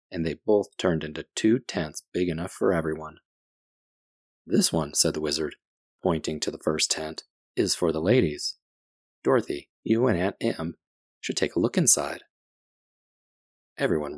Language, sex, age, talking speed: English, male, 30-49, 150 wpm